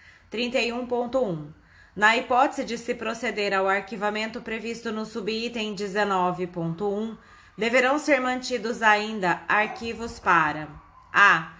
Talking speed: 100 wpm